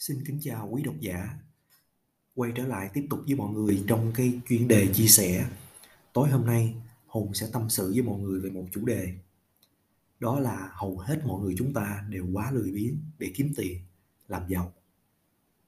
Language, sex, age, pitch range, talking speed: Vietnamese, male, 20-39, 105-145 Hz, 195 wpm